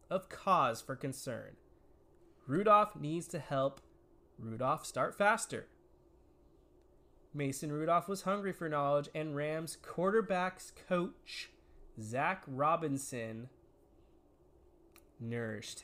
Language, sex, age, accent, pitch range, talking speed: English, male, 20-39, American, 135-190 Hz, 90 wpm